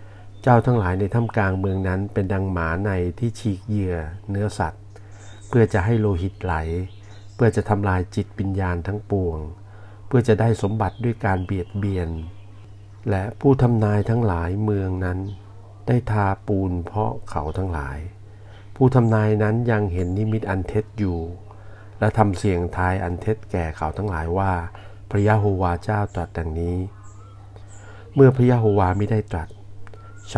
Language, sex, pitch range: Thai, male, 95-105 Hz